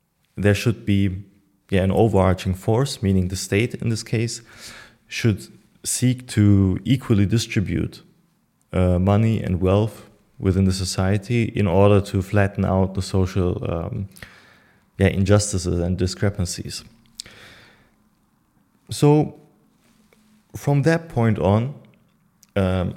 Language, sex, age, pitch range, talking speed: English, male, 30-49, 95-115 Hz, 105 wpm